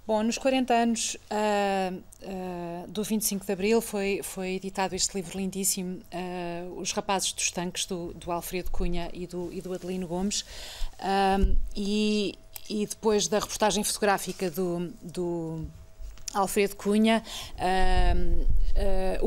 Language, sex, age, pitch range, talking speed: Portuguese, female, 30-49, 185-225 Hz, 120 wpm